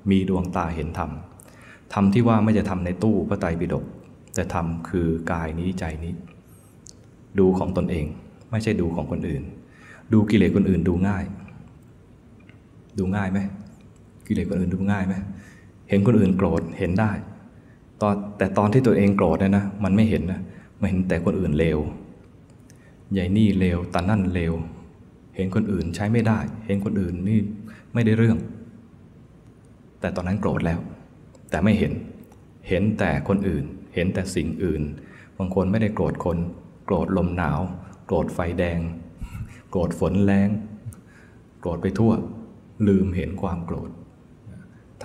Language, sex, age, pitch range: Thai, male, 20-39, 90-105 Hz